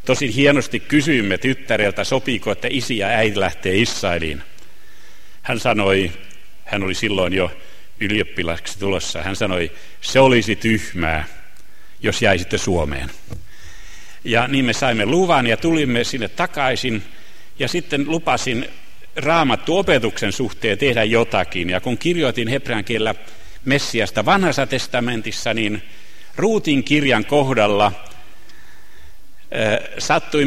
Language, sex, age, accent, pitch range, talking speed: Finnish, male, 60-79, native, 100-135 Hz, 110 wpm